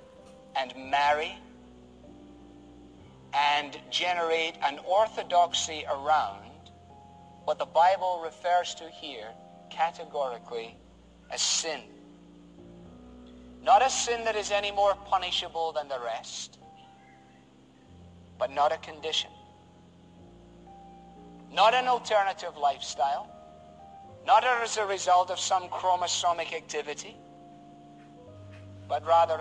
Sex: male